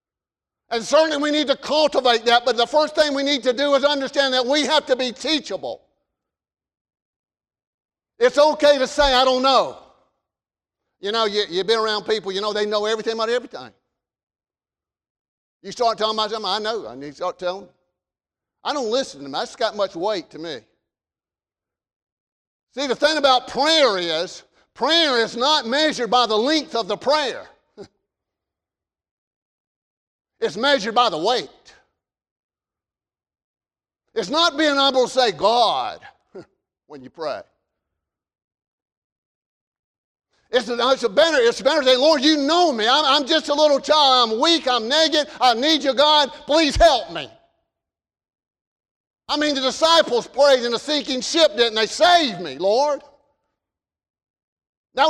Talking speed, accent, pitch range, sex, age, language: 155 wpm, American, 225-295 Hz, male, 50-69, English